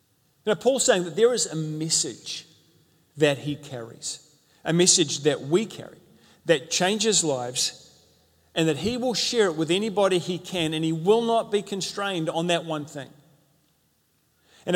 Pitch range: 145-185 Hz